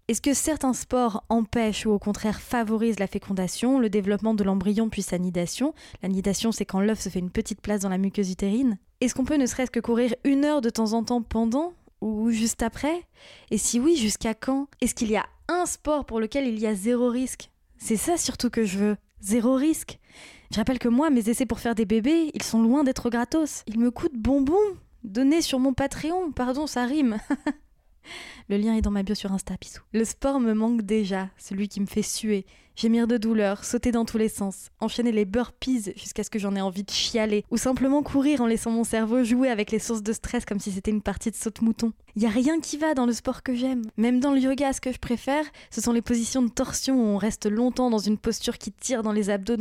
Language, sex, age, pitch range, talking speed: French, female, 10-29, 210-255 Hz, 235 wpm